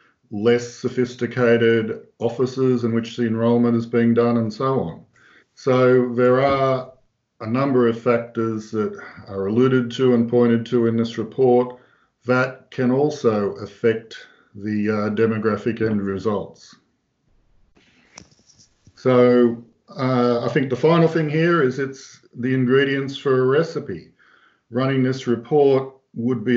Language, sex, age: English, male, 50-69